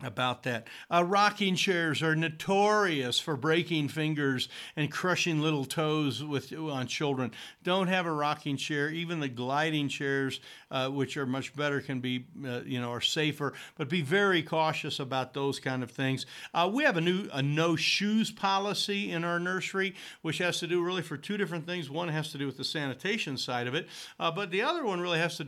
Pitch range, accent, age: 140-175 Hz, American, 60-79